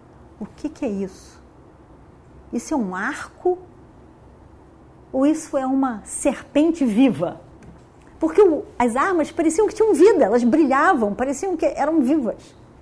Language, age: Portuguese, 40-59